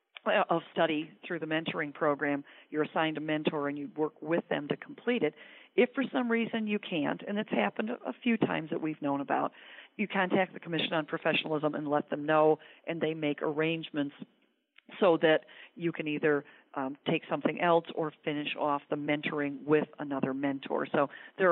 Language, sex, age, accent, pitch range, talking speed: English, female, 40-59, American, 145-175 Hz, 185 wpm